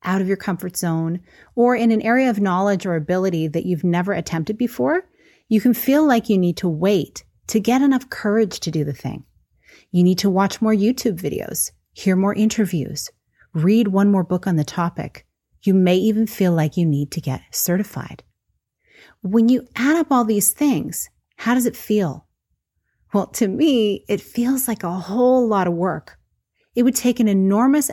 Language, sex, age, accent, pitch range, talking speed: English, female, 30-49, American, 170-235 Hz, 190 wpm